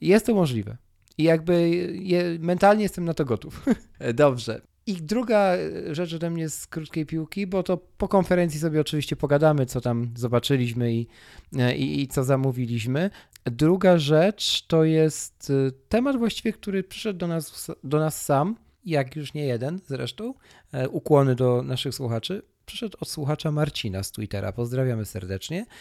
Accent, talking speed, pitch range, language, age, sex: native, 145 wpm, 120-165 Hz, Polish, 40-59, male